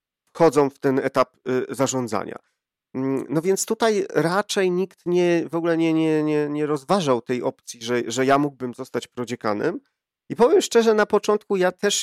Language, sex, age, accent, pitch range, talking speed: Polish, male, 40-59, native, 135-185 Hz, 165 wpm